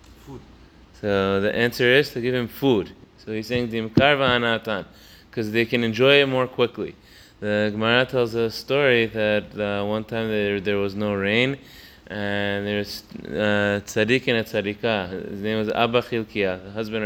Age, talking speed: 20-39, 170 wpm